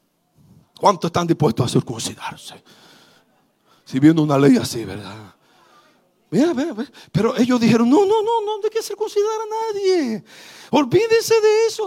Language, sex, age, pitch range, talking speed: Spanish, male, 50-69, 215-330 Hz, 145 wpm